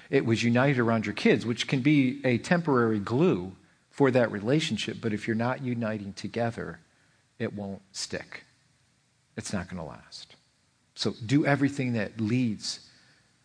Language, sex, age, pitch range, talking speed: English, male, 50-69, 115-155 Hz, 150 wpm